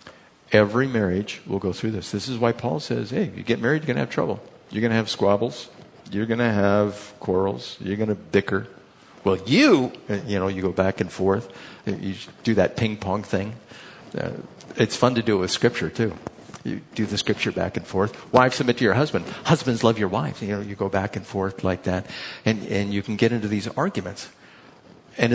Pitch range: 95-115 Hz